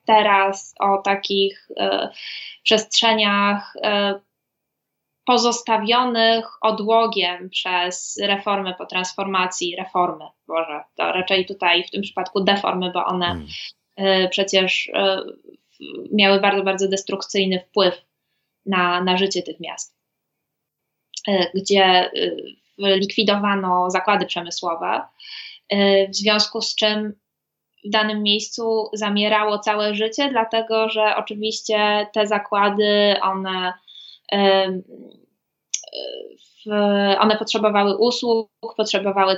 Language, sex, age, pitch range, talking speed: Polish, female, 20-39, 195-225 Hz, 100 wpm